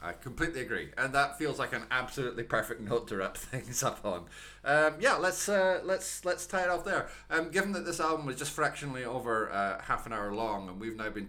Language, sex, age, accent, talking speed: English, male, 20-39, British, 235 wpm